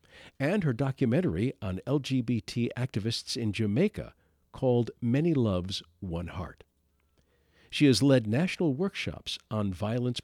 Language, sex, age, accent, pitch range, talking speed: English, male, 50-69, American, 100-140 Hz, 115 wpm